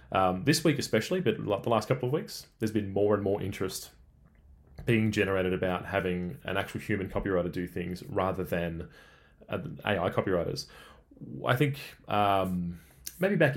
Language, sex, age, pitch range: English, male, 20-39, 90-120 Hz